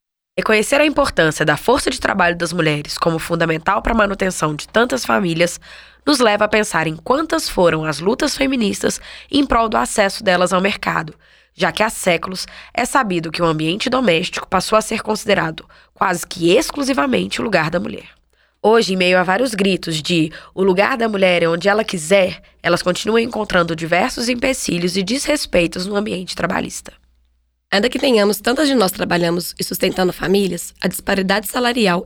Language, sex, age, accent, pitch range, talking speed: Portuguese, female, 10-29, Brazilian, 180-225 Hz, 175 wpm